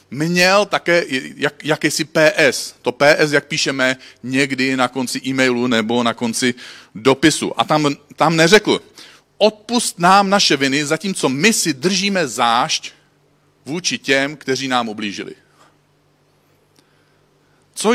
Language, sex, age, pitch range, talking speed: Czech, male, 40-59, 140-205 Hz, 125 wpm